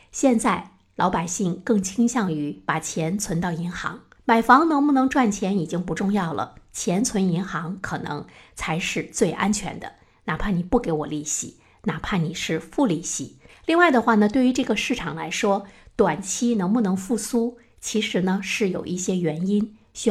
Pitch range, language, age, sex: 170-225 Hz, Chinese, 50-69, female